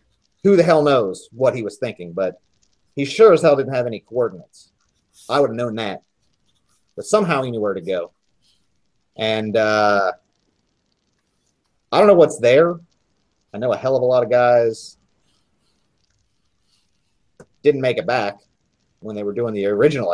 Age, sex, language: 40-59, male, English